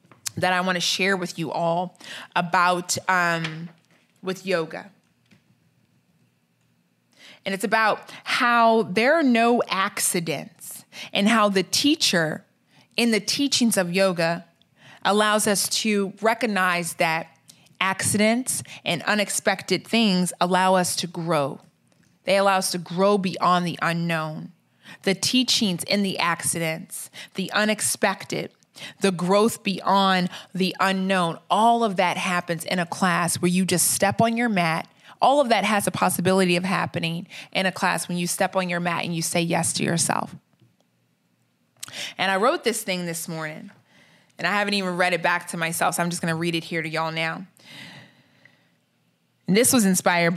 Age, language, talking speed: 20-39, English, 155 wpm